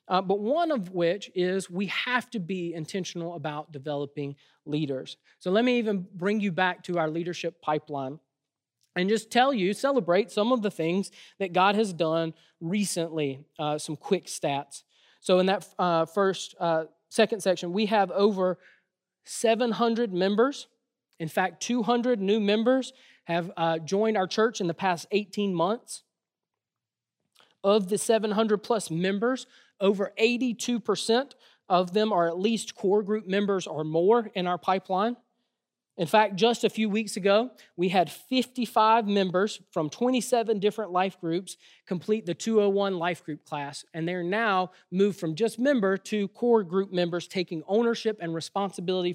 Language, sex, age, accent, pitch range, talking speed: English, male, 20-39, American, 175-225 Hz, 155 wpm